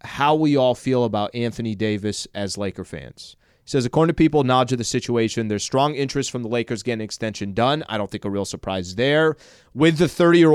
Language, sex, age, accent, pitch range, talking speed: English, male, 30-49, American, 115-140 Hz, 215 wpm